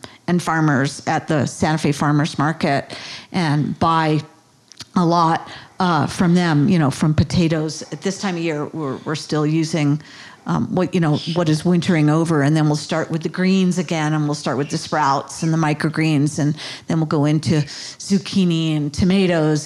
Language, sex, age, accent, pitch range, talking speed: English, female, 50-69, American, 155-180 Hz, 185 wpm